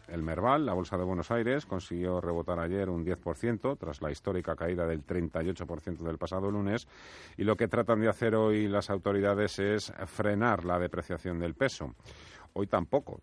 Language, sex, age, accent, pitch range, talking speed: Spanish, male, 40-59, Spanish, 80-105 Hz, 170 wpm